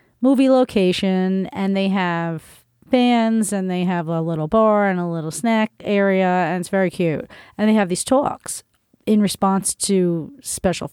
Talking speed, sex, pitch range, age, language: 165 wpm, female, 170-210 Hz, 40-59, English